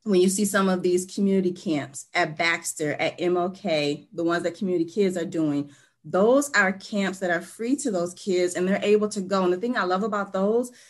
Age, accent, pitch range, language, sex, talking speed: 30-49, American, 165-200 Hz, English, female, 220 wpm